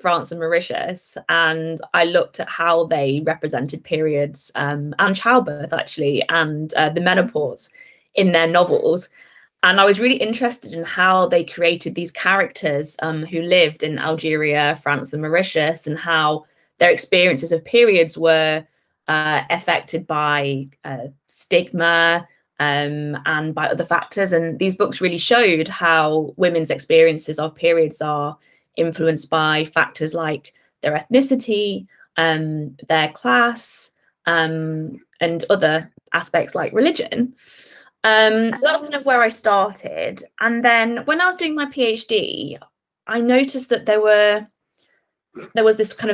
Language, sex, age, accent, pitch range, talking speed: English, female, 20-39, British, 155-220 Hz, 140 wpm